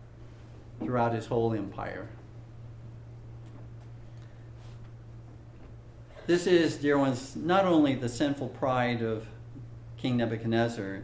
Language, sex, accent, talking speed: English, male, American, 85 wpm